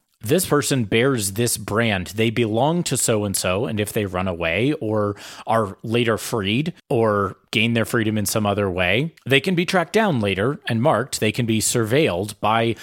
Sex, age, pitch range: male, 30-49, 100-125 Hz